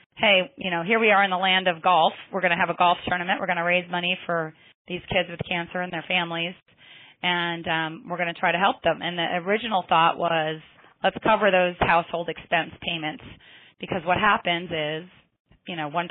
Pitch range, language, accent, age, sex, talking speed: 165-185 Hz, English, American, 30-49, female, 215 wpm